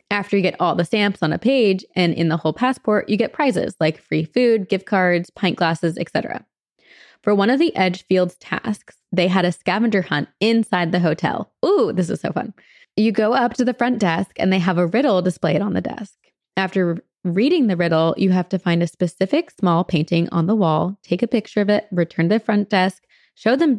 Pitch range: 175-240 Hz